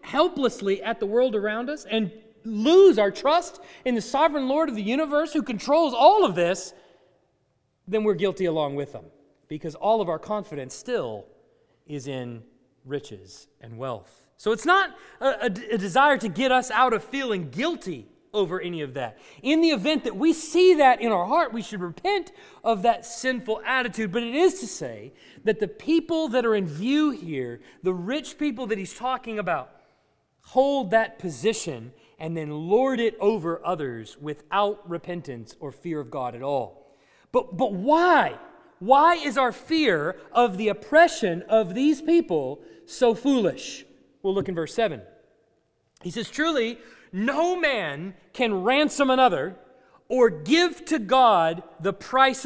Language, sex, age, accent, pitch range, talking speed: English, male, 40-59, American, 180-280 Hz, 165 wpm